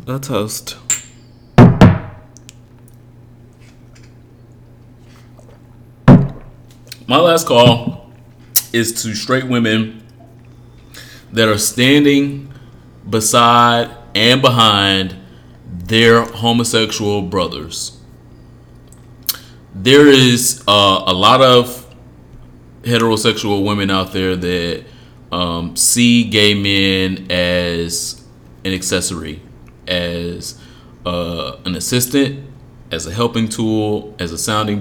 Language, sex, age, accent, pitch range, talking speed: English, male, 30-49, American, 95-120 Hz, 80 wpm